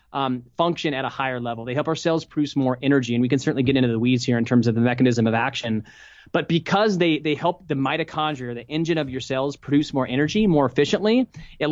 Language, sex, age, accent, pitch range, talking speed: English, male, 30-49, American, 125-150 Hz, 240 wpm